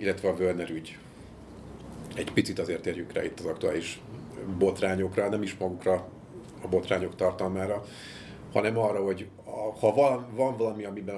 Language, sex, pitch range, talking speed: Hungarian, male, 95-100 Hz, 150 wpm